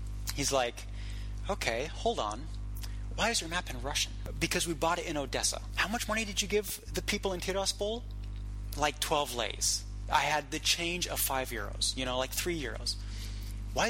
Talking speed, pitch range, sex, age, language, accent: 185 wpm, 100-155 Hz, male, 30-49, English, American